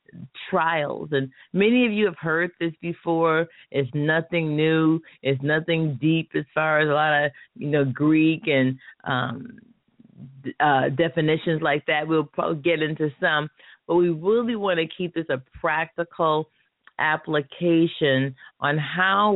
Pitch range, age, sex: 140-165 Hz, 40-59, female